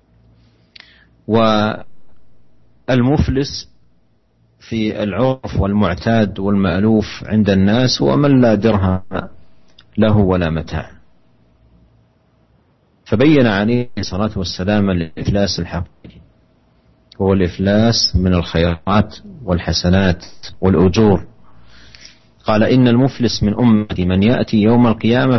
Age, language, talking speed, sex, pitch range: 50-69, Indonesian, 80 wpm, male, 90-110 Hz